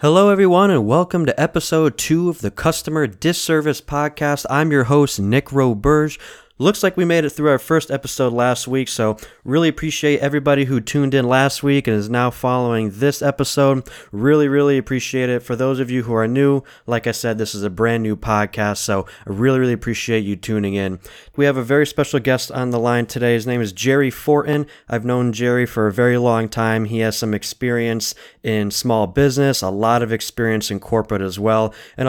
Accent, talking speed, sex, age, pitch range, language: American, 205 wpm, male, 20-39, 110-140 Hz, English